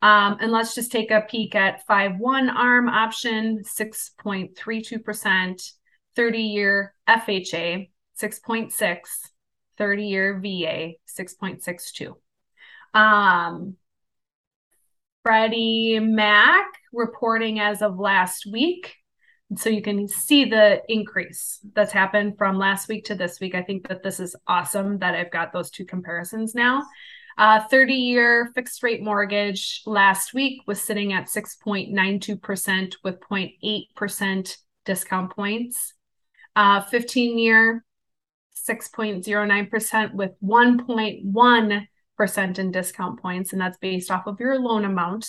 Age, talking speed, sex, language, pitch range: 20-39, 110 wpm, female, English, 190-225 Hz